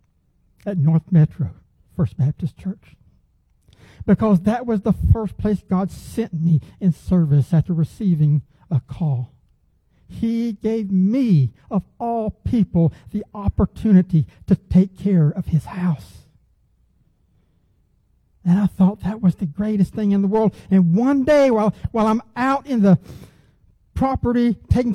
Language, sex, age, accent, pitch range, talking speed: English, male, 60-79, American, 160-230 Hz, 135 wpm